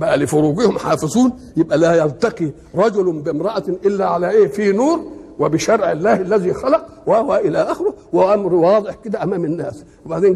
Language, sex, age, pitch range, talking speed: Arabic, male, 60-79, 165-230 Hz, 150 wpm